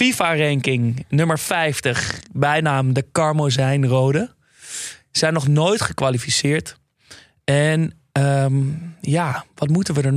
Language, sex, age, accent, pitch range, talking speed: Dutch, male, 20-39, Dutch, 135-165 Hz, 100 wpm